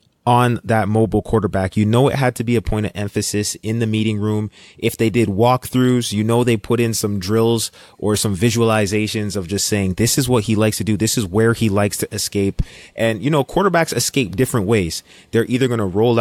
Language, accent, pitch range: English, American, 100-115 Hz